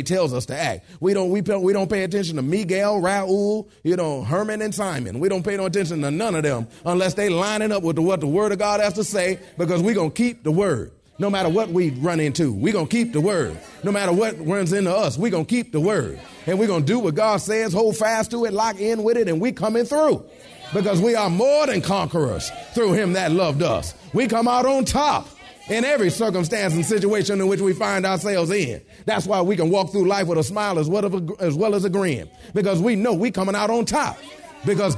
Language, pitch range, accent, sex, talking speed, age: English, 175-220 Hz, American, male, 255 wpm, 30-49